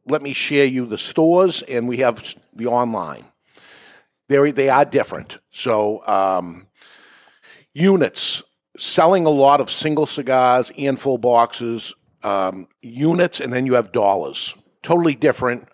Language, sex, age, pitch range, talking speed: English, male, 50-69, 110-145 Hz, 135 wpm